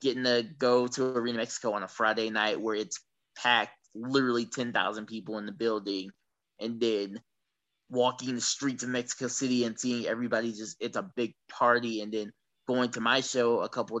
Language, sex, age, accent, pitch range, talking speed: English, male, 20-39, American, 115-130 Hz, 190 wpm